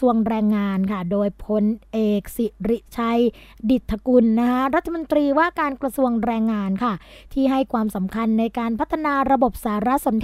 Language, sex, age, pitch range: Thai, female, 20-39, 220-275 Hz